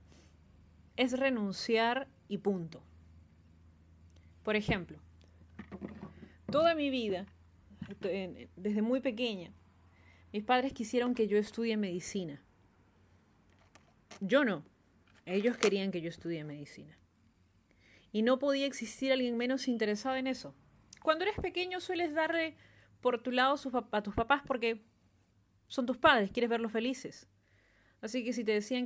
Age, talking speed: 30-49, 125 wpm